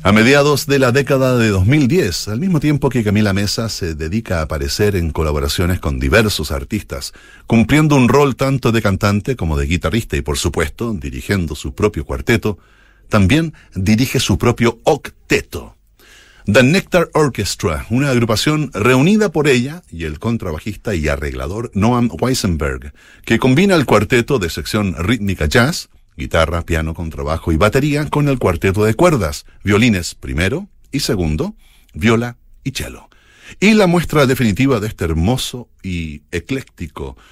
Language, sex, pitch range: Spanish, male, 85-135 Hz